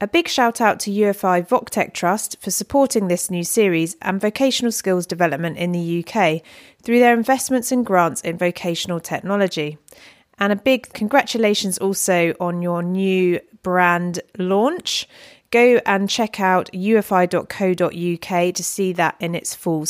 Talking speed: 150 wpm